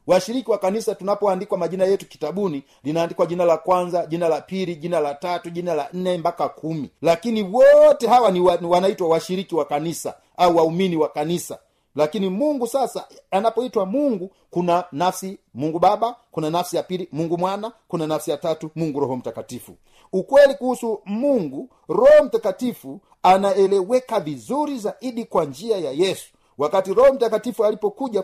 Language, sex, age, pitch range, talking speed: Swahili, male, 50-69, 165-225 Hz, 155 wpm